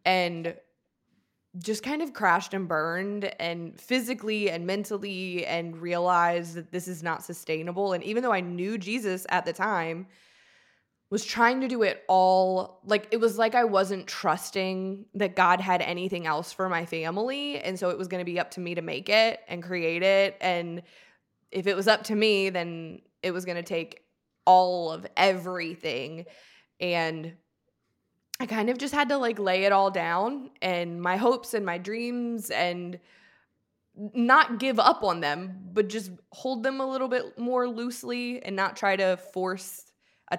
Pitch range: 180-225 Hz